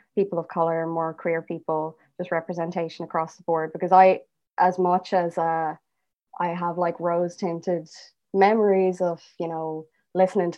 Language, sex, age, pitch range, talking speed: English, female, 20-39, 170-195 Hz, 160 wpm